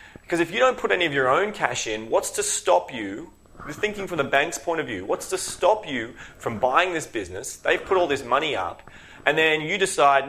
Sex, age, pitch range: male, 30-49, 115-160 Hz